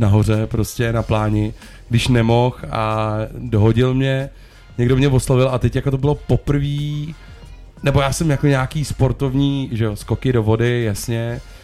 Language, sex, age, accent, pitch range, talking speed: Czech, male, 30-49, native, 115-135 Hz, 155 wpm